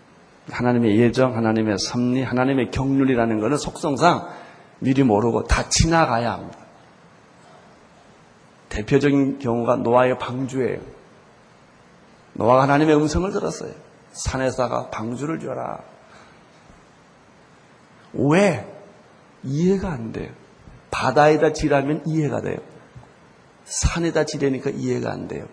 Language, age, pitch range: Korean, 40-59, 130-190 Hz